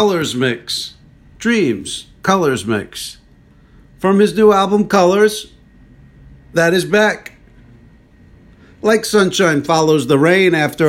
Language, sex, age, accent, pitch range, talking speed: English, male, 50-69, American, 135-180 Hz, 105 wpm